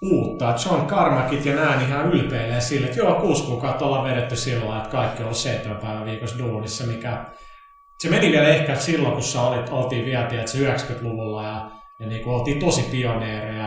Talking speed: 195 wpm